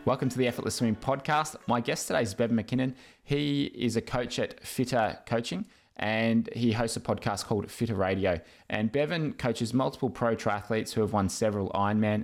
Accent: Australian